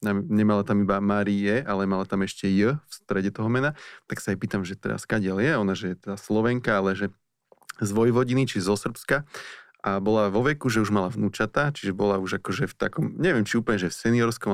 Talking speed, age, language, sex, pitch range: 225 wpm, 20-39, Slovak, male, 100-115 Hz